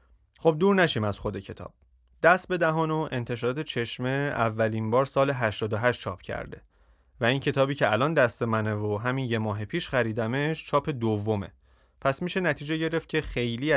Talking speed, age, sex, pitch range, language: 170 wpm, 30-49, male, 110-145 Hz, Persian